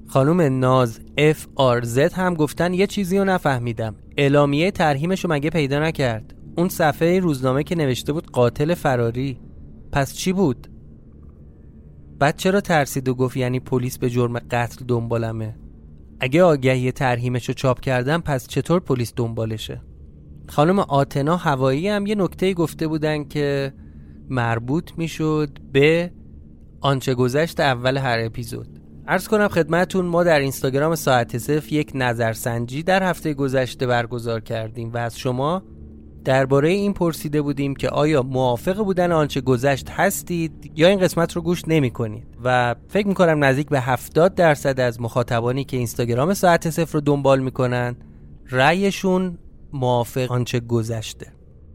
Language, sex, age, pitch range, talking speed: Persian, male, 30-49, 120-160 Hz, 145 wpm